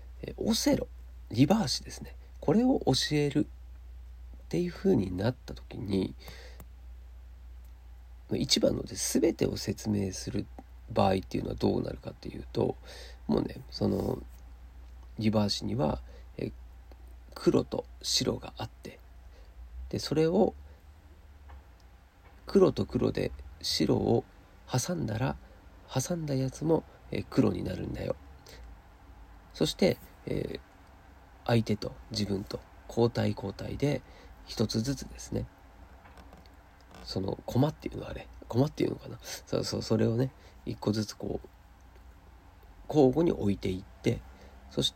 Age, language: 40-59, Japanese